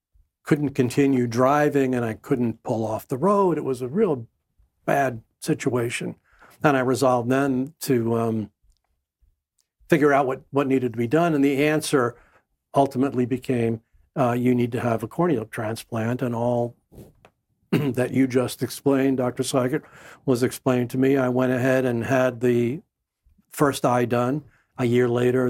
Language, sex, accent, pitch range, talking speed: English, male, American, 120-145 Hz, 160 wpm